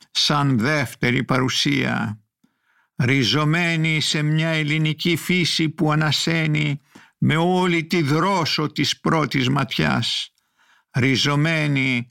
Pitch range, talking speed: 130-160 Hz, 90 wpm